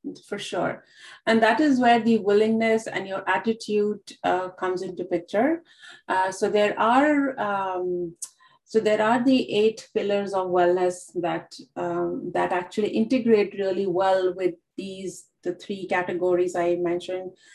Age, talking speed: 30-49, 145 wpm